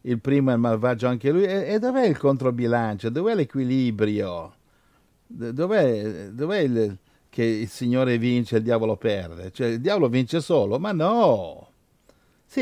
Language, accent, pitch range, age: Italian, native, 105-145 Hz, 60-79